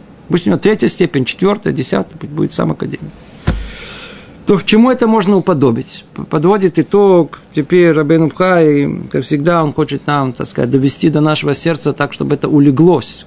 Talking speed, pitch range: 165 wpm, 145-205 Hz